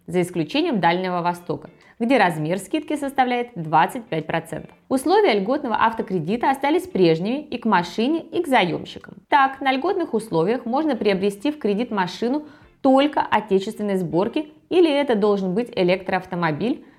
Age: 20-39